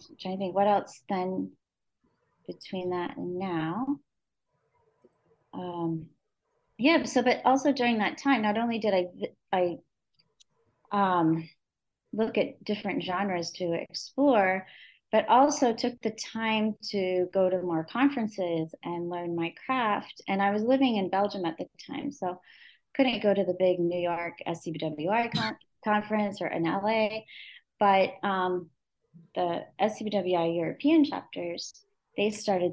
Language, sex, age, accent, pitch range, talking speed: English, female, 30-49, American, 175-235 Hz, 130 wpm